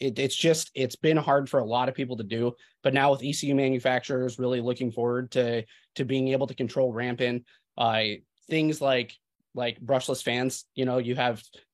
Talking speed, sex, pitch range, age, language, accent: 200 wpm, male, 120-140 Hz, 20-39, English, American